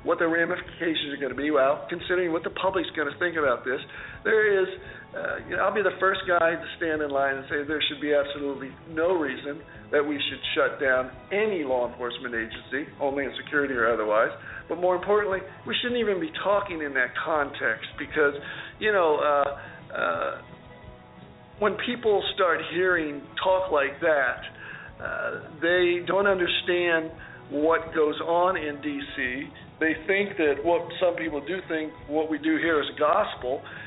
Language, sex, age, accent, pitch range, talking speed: English, male, 50-69, American, 145-185 Hz, 170 wpm